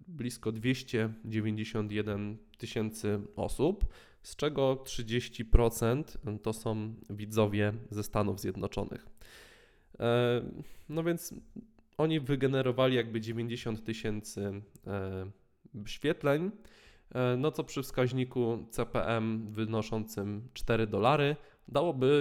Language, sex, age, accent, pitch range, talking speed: Polish, male, 20-39, native, 105-130 Hz, 80 wpm